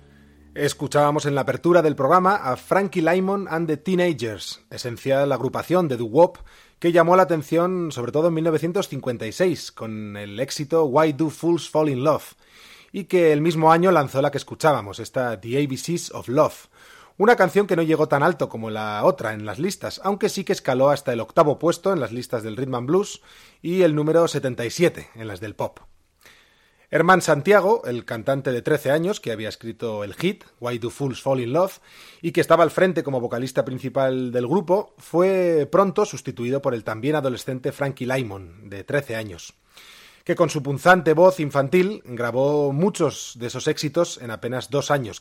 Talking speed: 185 wpm